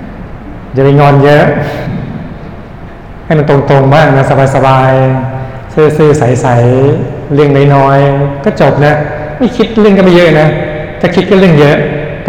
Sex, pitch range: male, 130-150 Hz